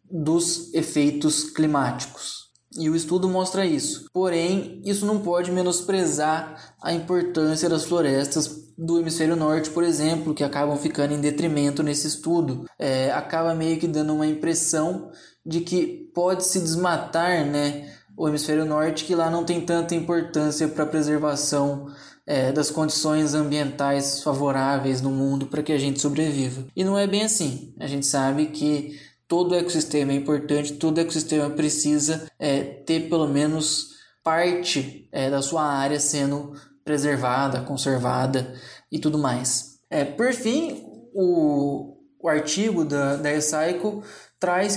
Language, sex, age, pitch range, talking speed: Portuguese, male, 10-29, 145-175 Hz, 140 wpm